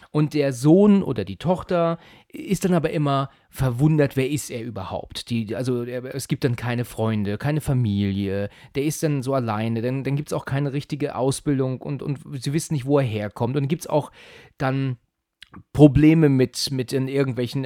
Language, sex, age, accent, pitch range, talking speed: German, male, 30-49, German, 120-155 Hz, 175 wpm